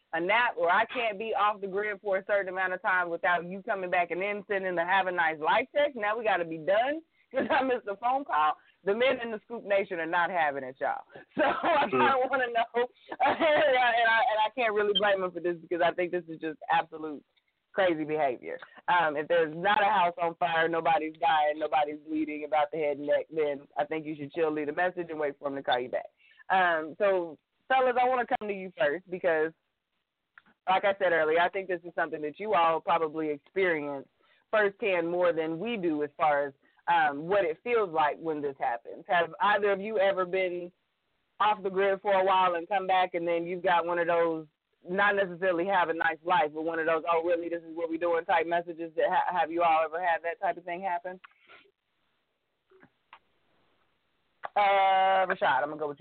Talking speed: 225 wpm